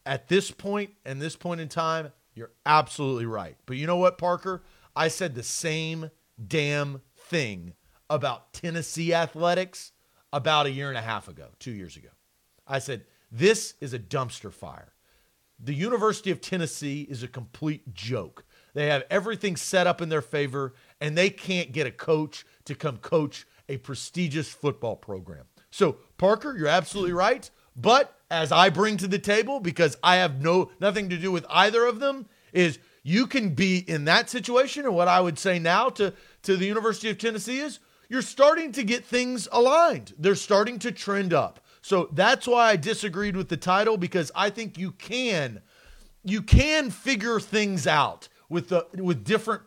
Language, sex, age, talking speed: English, male, 40-59, 180 wpm